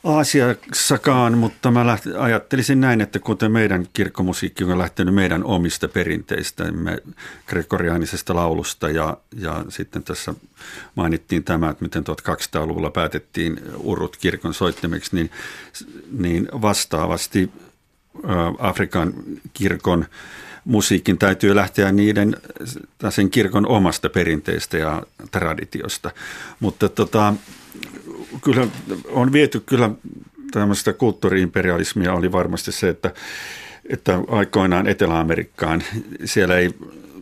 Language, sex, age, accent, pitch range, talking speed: Finnish, male, 50-69, native, 85-110 Hz, 100 wpm